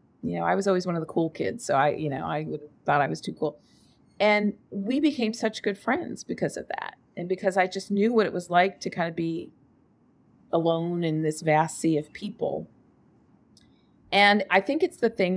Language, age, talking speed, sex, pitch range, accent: English, 40-59, 215 wpm, female, 155-190 Hz, American